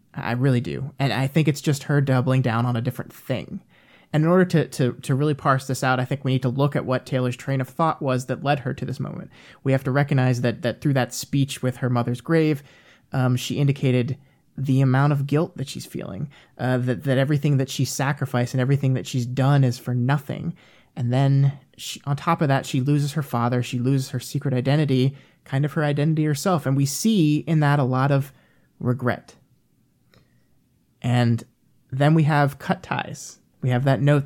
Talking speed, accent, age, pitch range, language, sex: 215 wpm, American, 20-39, 125-150 Hz, English, male